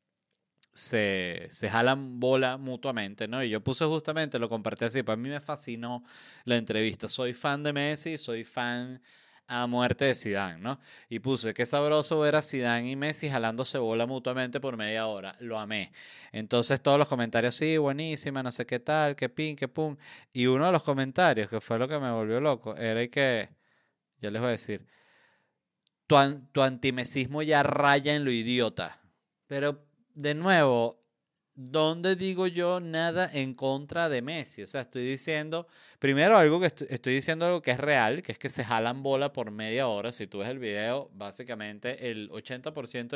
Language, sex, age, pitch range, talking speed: Spanish, male, 30-49, 110-140 Hz, 180 wpm